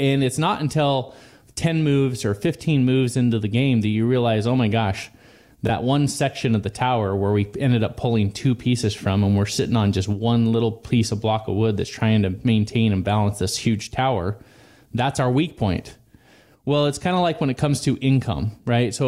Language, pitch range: English, 110-130 Hz